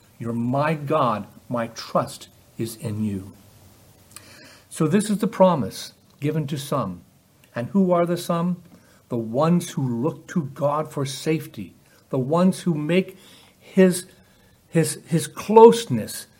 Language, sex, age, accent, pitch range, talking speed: English, male, 60-79, American, 115-155 Hz, 130 wpm